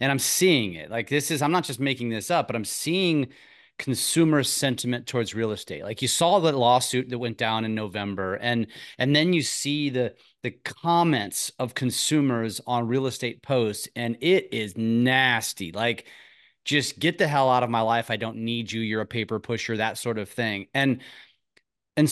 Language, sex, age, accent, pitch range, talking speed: English, male, 30-49, American, 115-150 Hz, 195 wpm